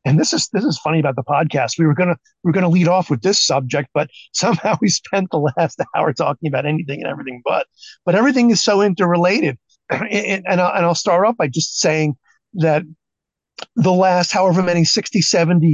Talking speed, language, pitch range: 215 wpm, English, 150-190 Hz